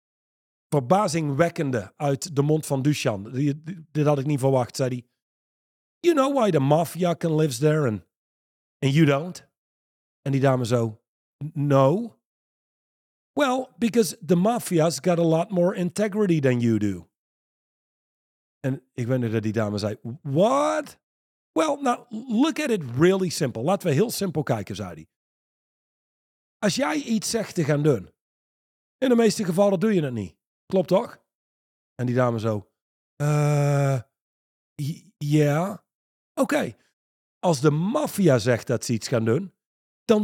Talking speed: 145 wpm